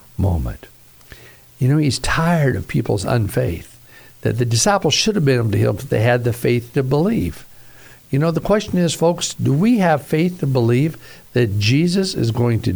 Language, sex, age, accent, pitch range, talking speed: English, male, 60-79, American, 120-170 Hz, 195 wpm